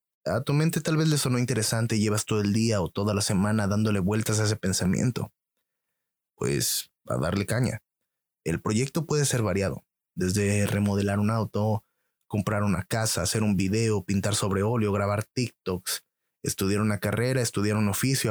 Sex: male